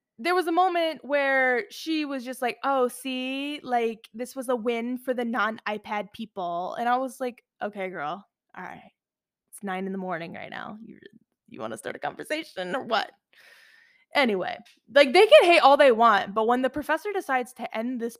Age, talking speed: 10-29, 195 wpm